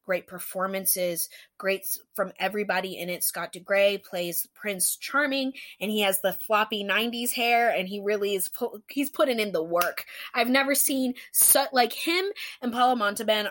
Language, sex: English, female